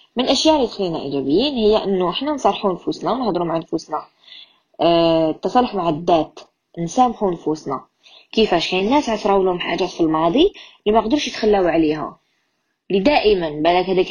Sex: female